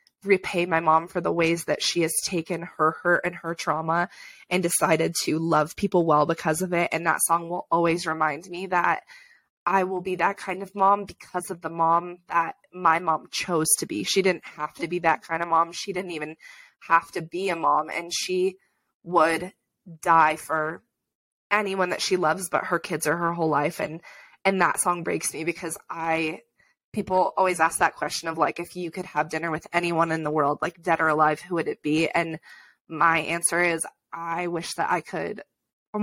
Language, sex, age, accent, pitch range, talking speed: English, female, 20-39, American, 165-195 Hz, 210 wpm